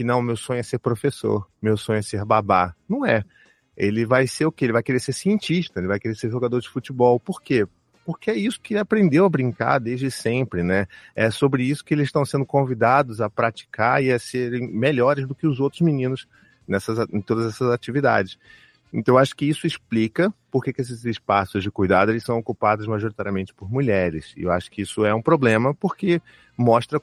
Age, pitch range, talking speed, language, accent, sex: 30-49, 110-145 Hz, 215 wpm, Portuguese, Brazilian, male